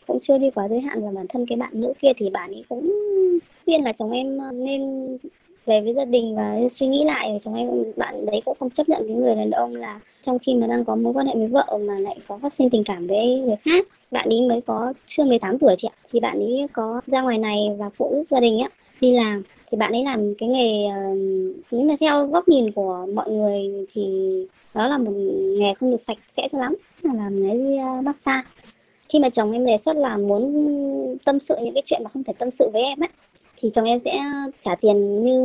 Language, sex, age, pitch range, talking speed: Vietnamese, male, 20-39, 210-270 Hz, 245 wpm